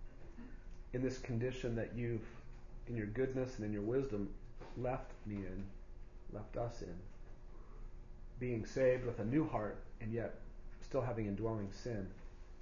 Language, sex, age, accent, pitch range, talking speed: English, male, 40-59, American, 95-120 Hz, 145 wpm